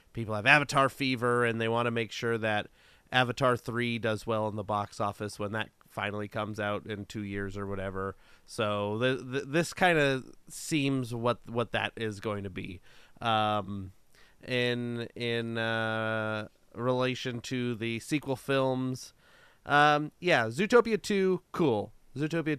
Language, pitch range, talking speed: English, 110-140 Hz, 155 wpm